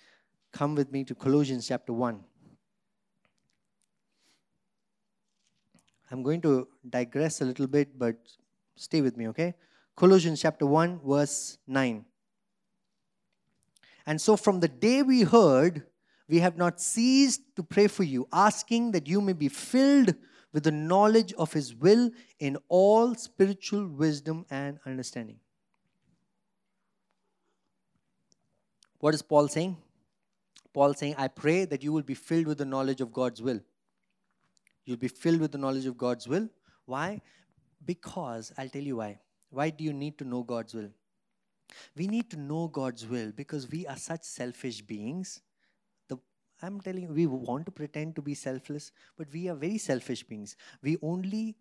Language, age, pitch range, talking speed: English, 20-39, 135-195 Hz, 150 wpm